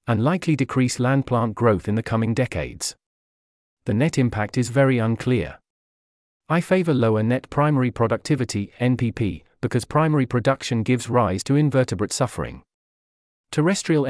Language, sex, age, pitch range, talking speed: English, male, 40-59, 105-145 Hz, 135 wpm